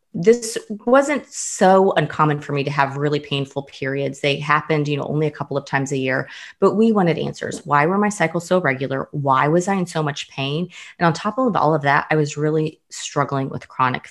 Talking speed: 220 wpm